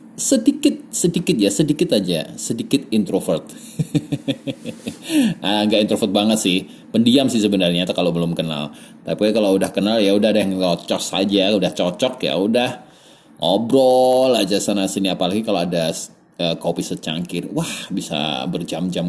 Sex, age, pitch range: male, 30-49, 95-145 Hz